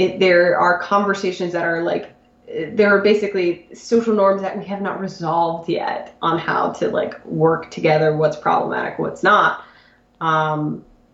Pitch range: 160-200 Hz